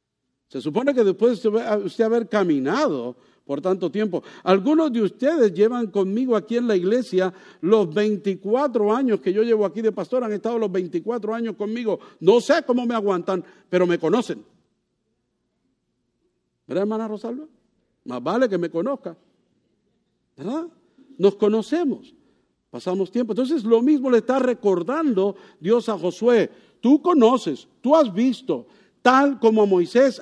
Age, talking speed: 50-69, 145 wpm